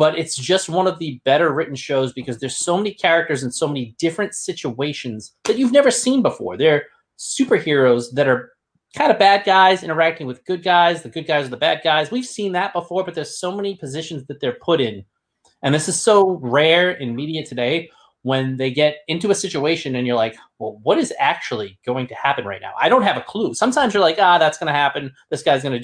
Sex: male